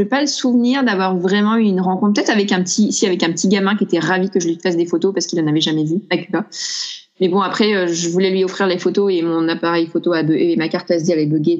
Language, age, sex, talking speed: French, 20-39, female, 290 wpm